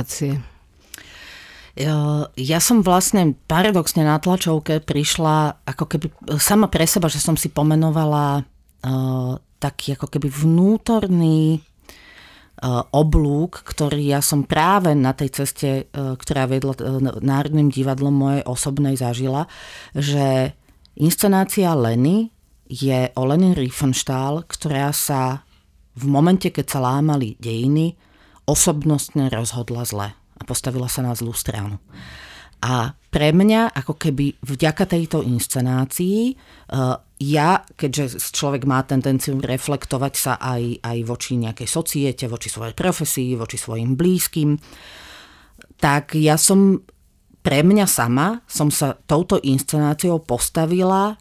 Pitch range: 130-160 Hz